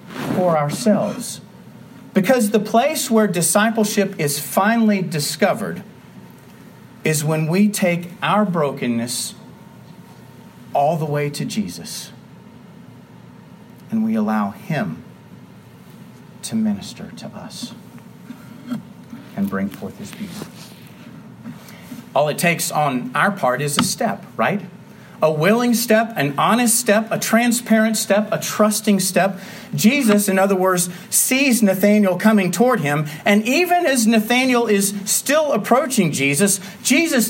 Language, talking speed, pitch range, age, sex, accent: English, 120 wpm, 185-230 Hz, 40-59, male, American